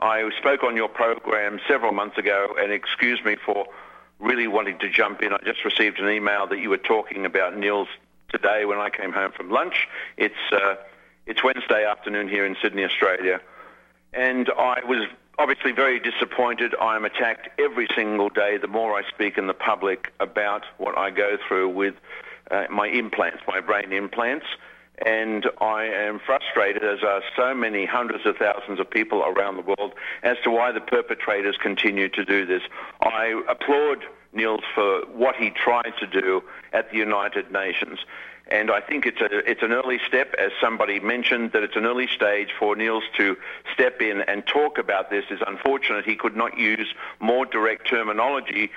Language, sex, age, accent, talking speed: English, male, 50-69, Australian, 180 wpm